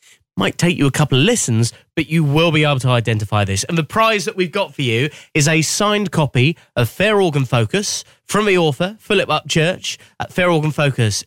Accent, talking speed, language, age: British, 210 wpm, English, 20-39